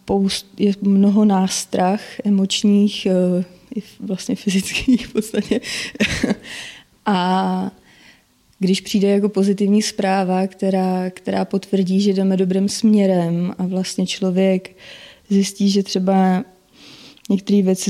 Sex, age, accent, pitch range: female, 20-39, native, 185-205 Hz